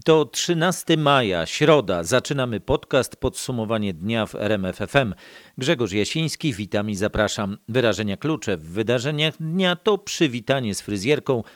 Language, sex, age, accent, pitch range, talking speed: Polish, male, 40-59, native, 105-135 Hz, 125 wpm